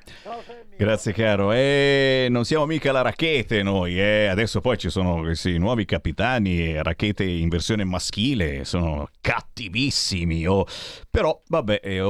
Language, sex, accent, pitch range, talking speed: Italian, male, native, 90-140 Hz, 140 wpm